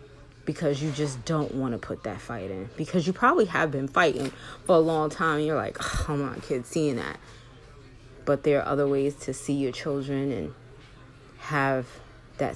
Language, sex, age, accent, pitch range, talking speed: English, female, 20-39, American, 135-175 Hz, 190 wpm